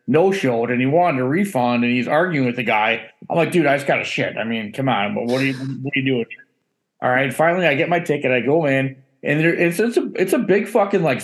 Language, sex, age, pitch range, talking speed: English, male, 20-39, 130-170 Hz, 280 wpm